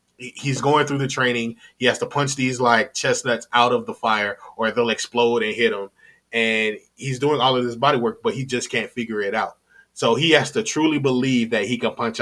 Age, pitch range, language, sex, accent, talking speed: 20-39, 115-135 Hz, English, male, American, 230 wpm